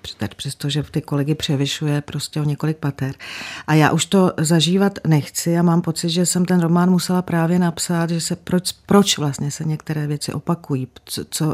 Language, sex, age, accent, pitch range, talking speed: Czech, female, 40-59, native, 150-170 Hz, 185 wpm